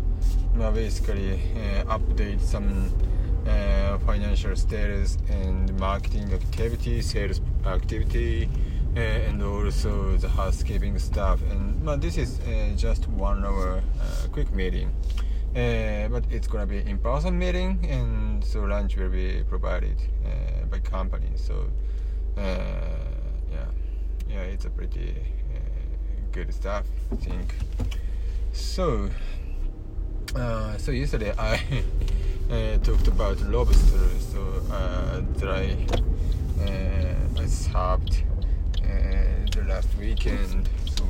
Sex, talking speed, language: male, 115 wpm, English